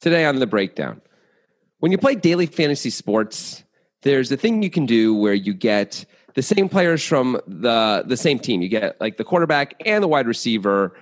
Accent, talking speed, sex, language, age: American, 195 wpm, male, English, 30-49